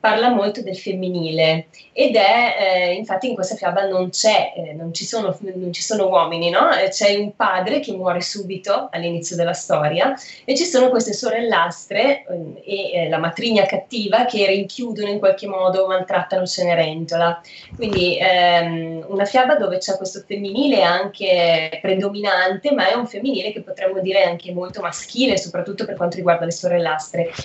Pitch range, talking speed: 175-205 Hz, 165 wpm